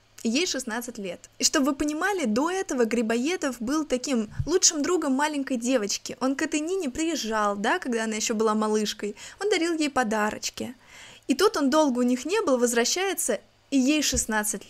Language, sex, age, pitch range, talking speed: Russian, female, 20-39, 225-295 Hz, 180 wpm